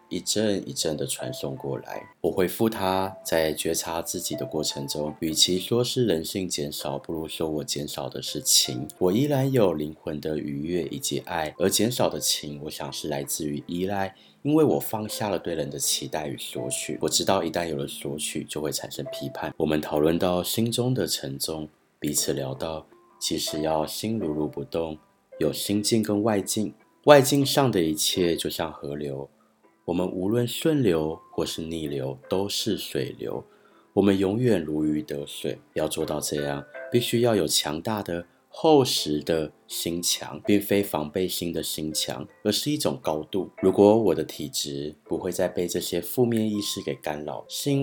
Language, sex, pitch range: Chinese, male, 75-105 Hz